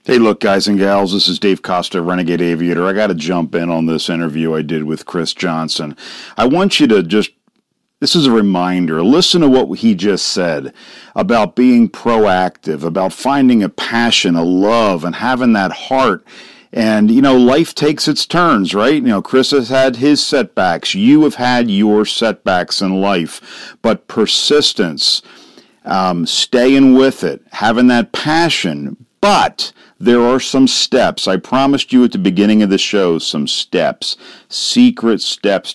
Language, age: English, 50-69